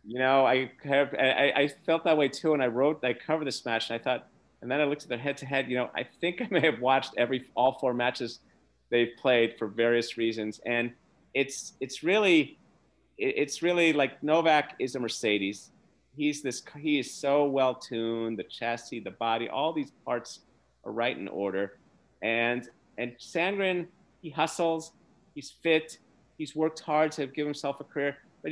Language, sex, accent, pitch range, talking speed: English, male, American, 115-155 Hz, 185 wpm